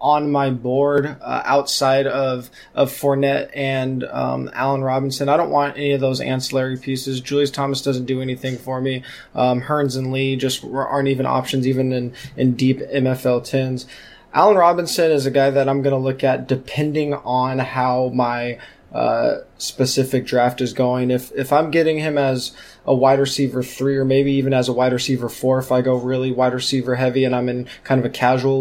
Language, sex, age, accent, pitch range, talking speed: English, male, 20-39, American, 130-140 Hz, 195 wpm